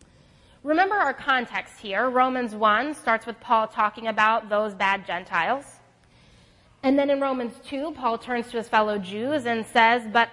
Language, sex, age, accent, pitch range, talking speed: English, female, 20-39, American, 215-275 Hz, 165 wpm